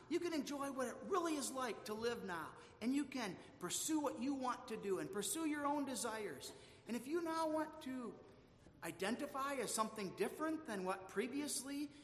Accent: American